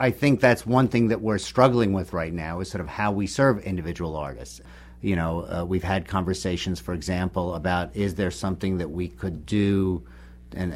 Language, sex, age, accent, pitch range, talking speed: English, male, 50-69, American, 80-95 Hz, 200 wpm